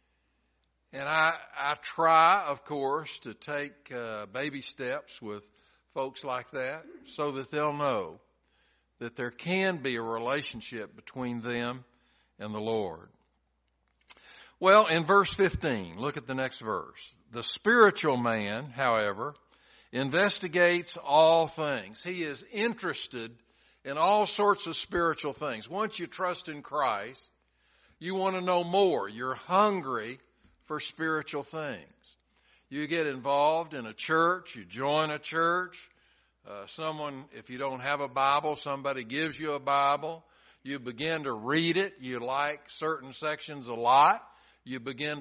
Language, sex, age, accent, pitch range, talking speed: English, male, 60-79, American, 130-165 Hz, 140 wpm